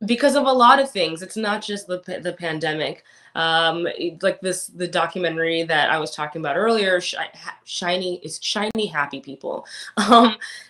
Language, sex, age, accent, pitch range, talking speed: English, female, 20-39, American, 160-195 Hz, 175 wpm